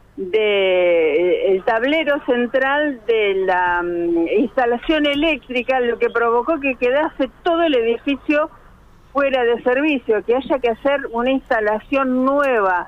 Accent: Argentinian